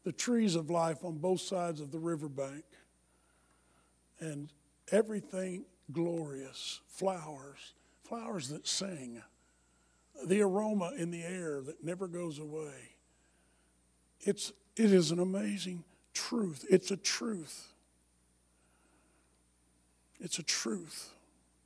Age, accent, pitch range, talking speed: 50-69, American, 160-235 Hz, 105 wpm